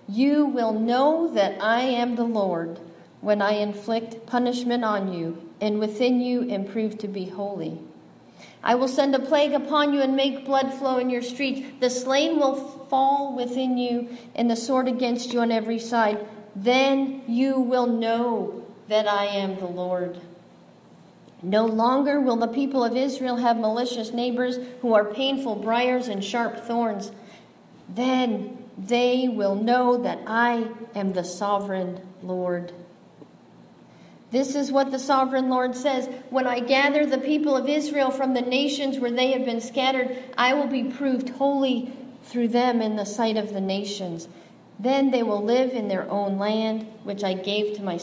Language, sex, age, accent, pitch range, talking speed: English, female, 40-59, American, 210-260 Hz, 165 wpm